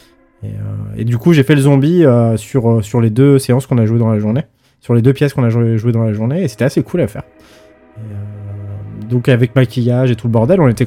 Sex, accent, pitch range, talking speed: male, French, 115-145 Hz, 270 wpm